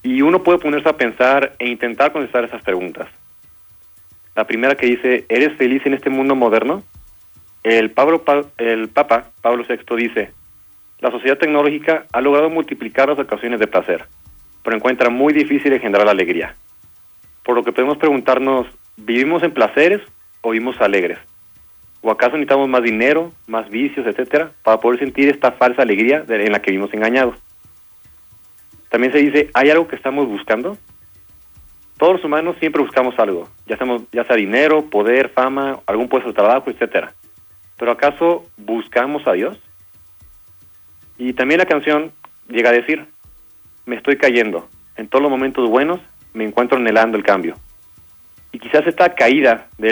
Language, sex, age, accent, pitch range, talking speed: Spanish, male, 40-59, Mexican, 105-145 Hz, 155 wpm